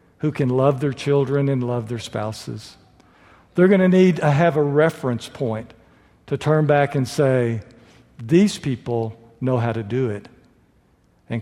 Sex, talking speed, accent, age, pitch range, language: male, 165 wpm, American, 60-79, 110-155 Hz, English